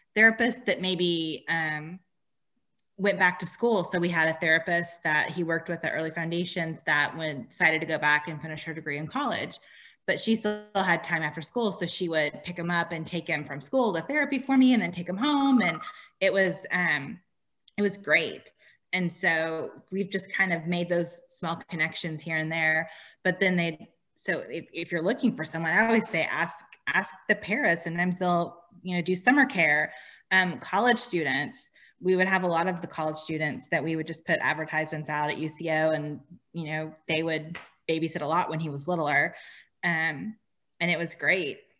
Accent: American